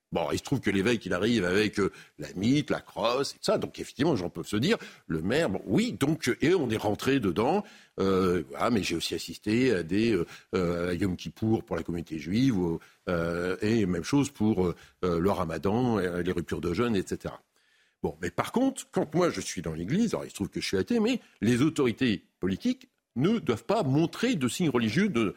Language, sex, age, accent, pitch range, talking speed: French, male, 60-79, French, 95-140 Hz, 220 wpm